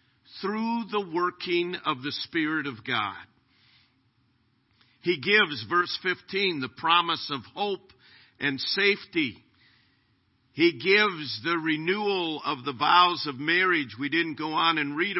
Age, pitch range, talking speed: 50-69, 130-190 Hz, 130 wpm